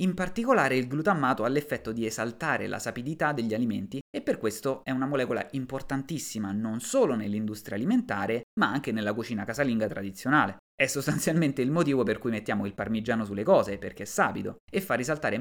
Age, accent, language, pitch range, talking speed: 20-39, native, Italian, 110-145 Hz, 180 wpm